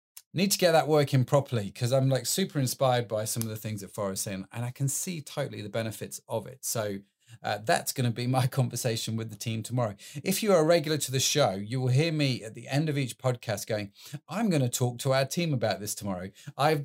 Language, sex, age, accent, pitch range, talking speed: English, male, 30-49, British, 105-140 Hz, 255 wpm